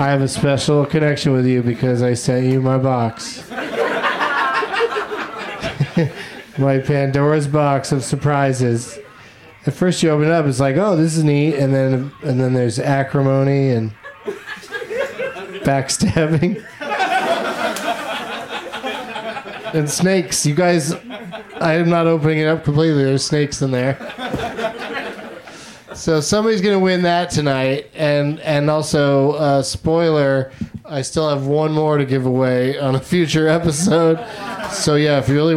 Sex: male